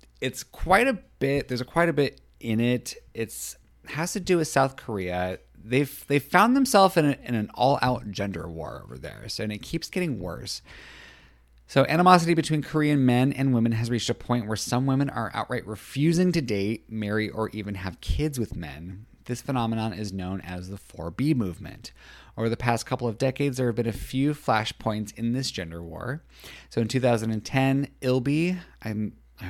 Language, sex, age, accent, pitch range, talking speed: English, male, 30-49, American, 100-130 Hz, 185 wpm